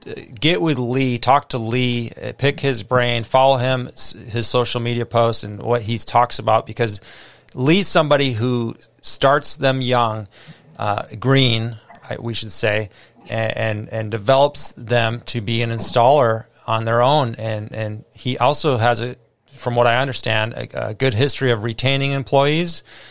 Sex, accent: male, American